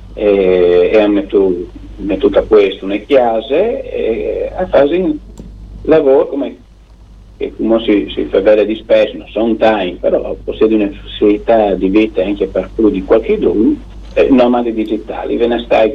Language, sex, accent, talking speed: Italian, male, native, 160 wpm